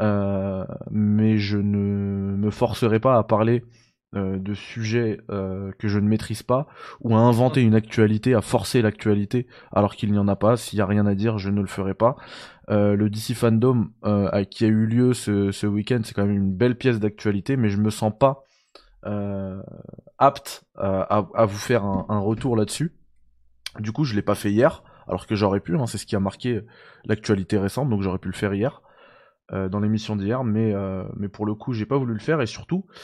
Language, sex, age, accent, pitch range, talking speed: French, male, 20-39, French, 100-125 Hz, 220 wpm